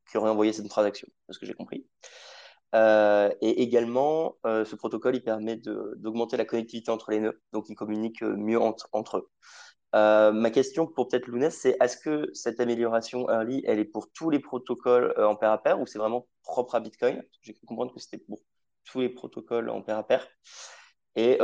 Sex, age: male, 20-39